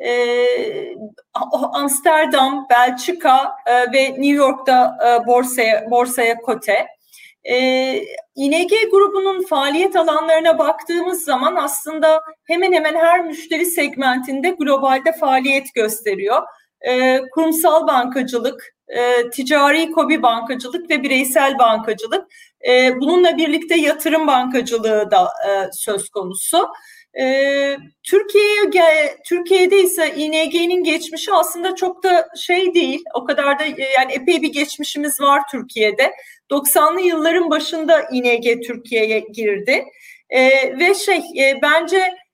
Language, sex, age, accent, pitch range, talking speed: Turkish, female, 30-49, native, 265-345 Hz, 95 wpm